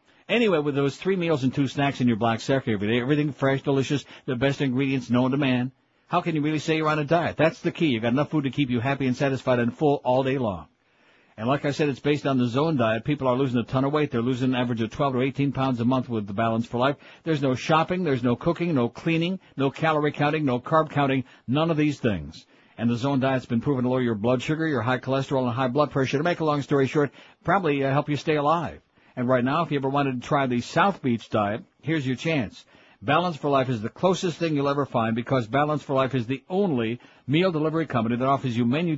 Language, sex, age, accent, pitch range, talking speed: English, male, 60-79, American, 125-150 Hz, 260 wpm